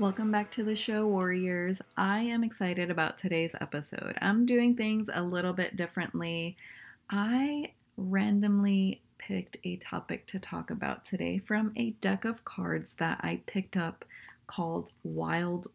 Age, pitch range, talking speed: 20-39, 155-205 Hz, 150 wpm